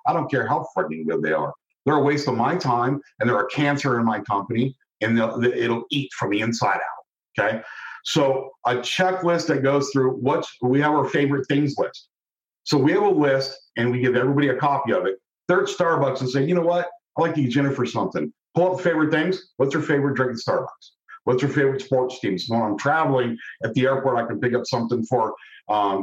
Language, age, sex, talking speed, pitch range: English, 50-69, male, 225 wpm, 125-155 Hz